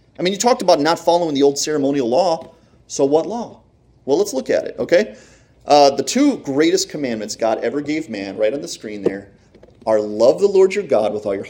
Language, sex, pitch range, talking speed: English, male, 115-165 Hz, 225 wpm